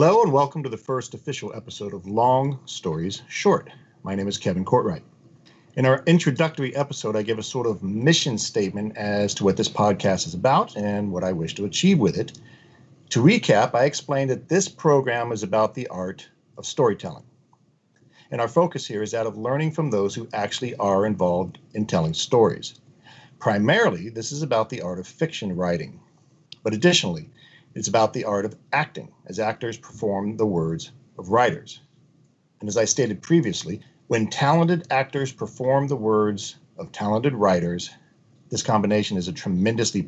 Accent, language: American, English